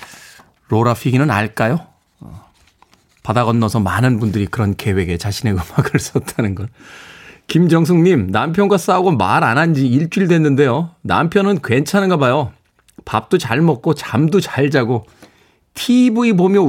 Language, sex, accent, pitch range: Korean, male, native, 110-185 Hz